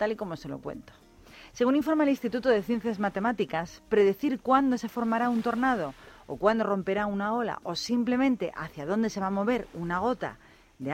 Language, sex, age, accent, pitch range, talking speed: Spanish, female, 40-59, Spanish, 175-245 Hz, 190 wpm